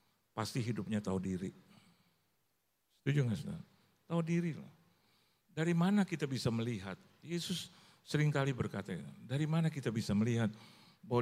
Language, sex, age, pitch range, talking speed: Indonesian, male, 50-69, 110-155 Hz, 130 wpm